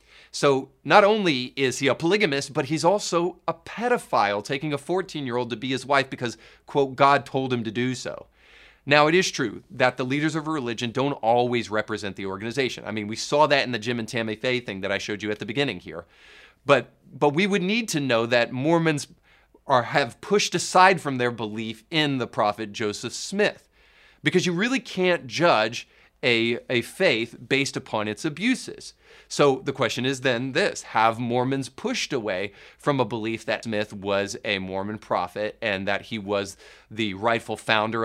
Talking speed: 190 wpm